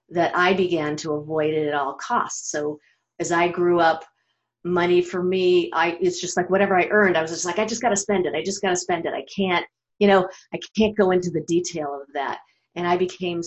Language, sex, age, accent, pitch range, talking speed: English, female, 40-59, American, 160-190 Hz, 235 wpm